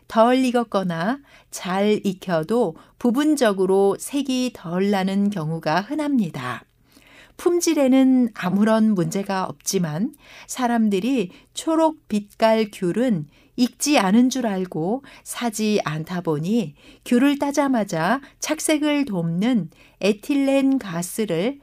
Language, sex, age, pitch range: Korean, female, 60-79, 175-250 Hz